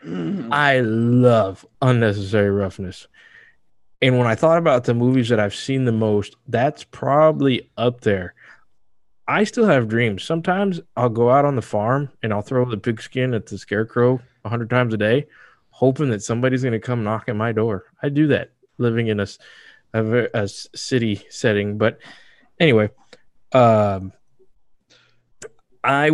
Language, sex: English, male